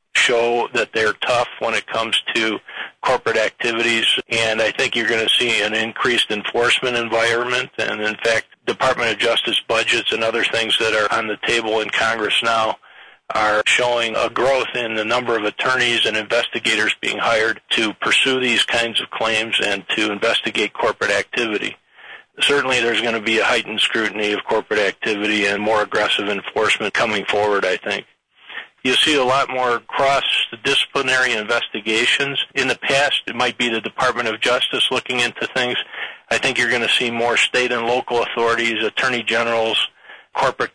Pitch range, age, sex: 110-120 Hz, 40-59, male